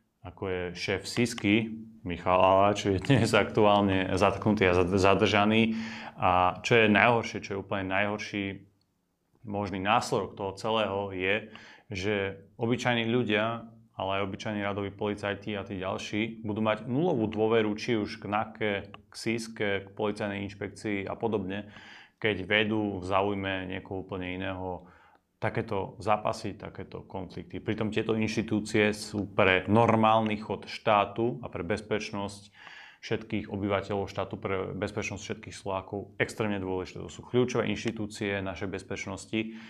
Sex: male